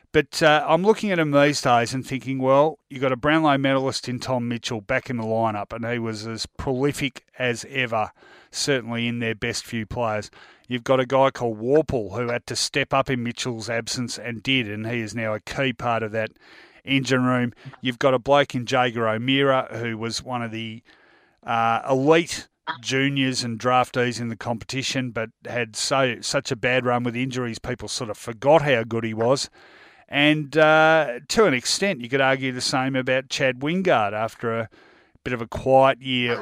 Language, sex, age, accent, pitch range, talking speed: English, male, 30-49, Australian, 120-145 Hz, 200 wpm